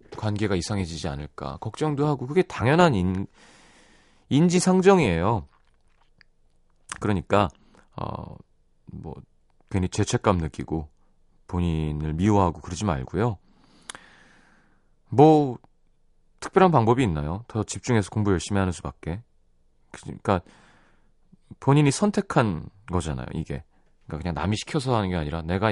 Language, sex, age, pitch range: Korean, male, 30-49, 85-135 Hz